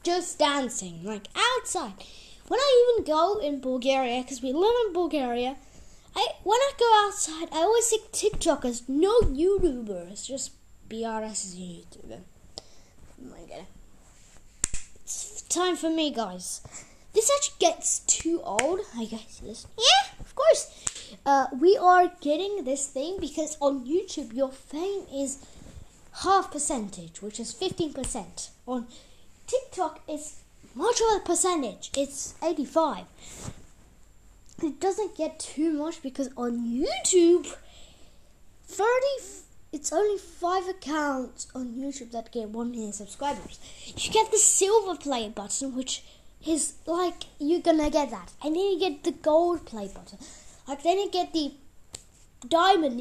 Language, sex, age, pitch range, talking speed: English, female, 10-29, 260-365 Hz, 140 wpm